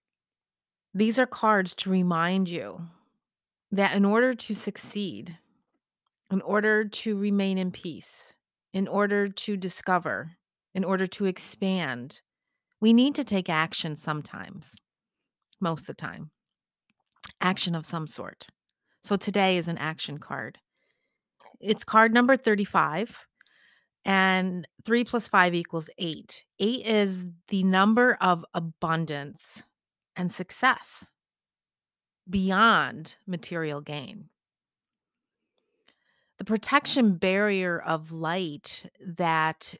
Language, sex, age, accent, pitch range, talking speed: English, female, 30-49, American, 170-210 Hz, 110 wpm